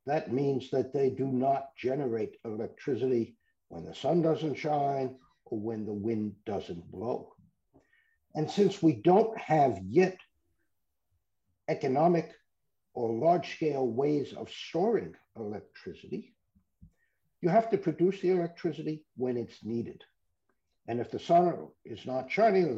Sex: male